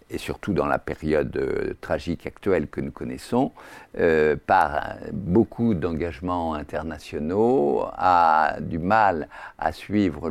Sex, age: male, 50-69